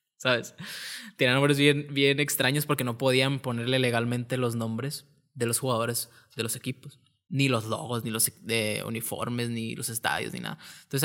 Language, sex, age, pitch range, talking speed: Spanish, male, 20-39, 120-145 Hz, 175 wpm